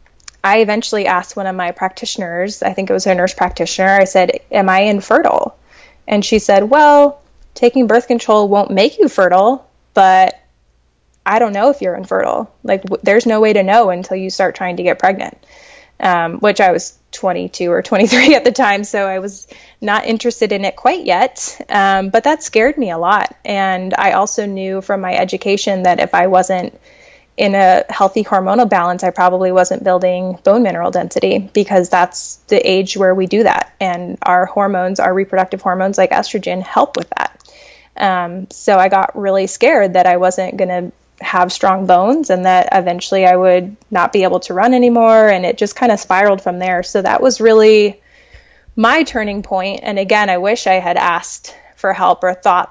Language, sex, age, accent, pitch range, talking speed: English, female, 20-39, American, 185-220 Hz, 190 wpm